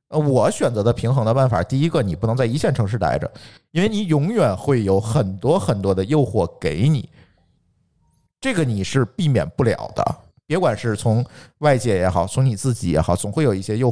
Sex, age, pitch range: male, 50-69, 100-150 Hz